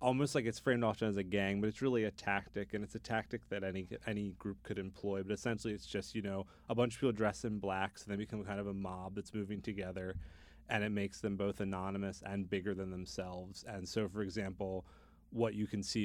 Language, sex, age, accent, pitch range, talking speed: English, male, 30-49, American, 95-110 Hz, 240 wpm